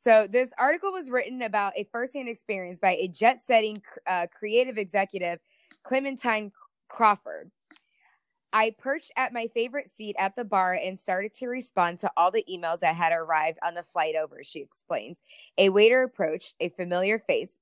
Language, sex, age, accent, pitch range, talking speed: English, female, 20-39, American, 190-245 Hz, 165 wpm